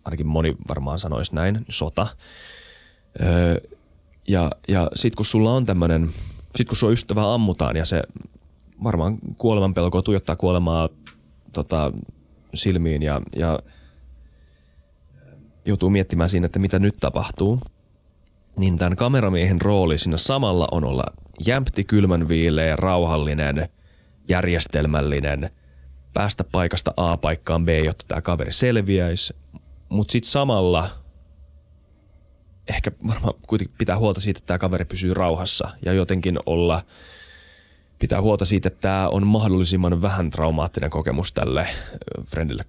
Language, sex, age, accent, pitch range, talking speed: Finnish, male, 30-49, native, 75-95 Hz, 120 wpm